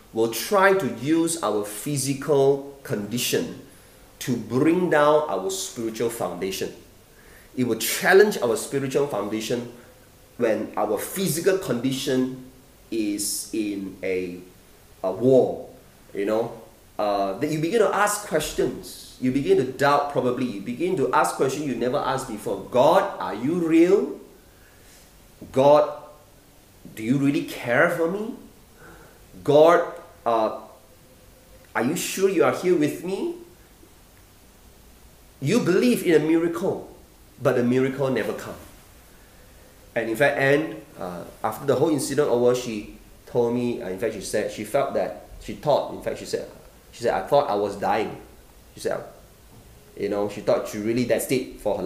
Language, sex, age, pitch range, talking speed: English, male, 30-49, 110-155 Hz, 150 wpm